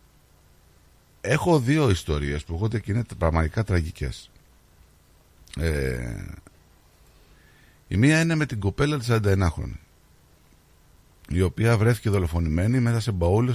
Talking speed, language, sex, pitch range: 110 wpm, Greek, male, 75-110 Hz